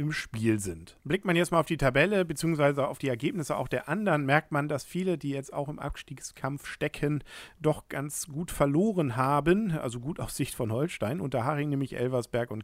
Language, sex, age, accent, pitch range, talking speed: German, male, 50-69, German, 125-165 Hz, 205 wpm